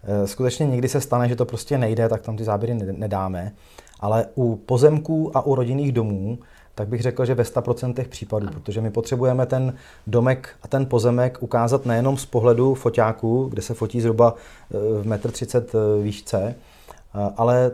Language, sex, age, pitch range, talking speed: Czech, male, 30-49, 110-130 Hz, 165 wpm